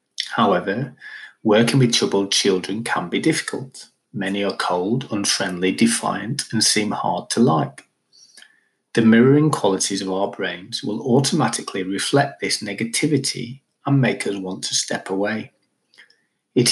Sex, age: male, 30-49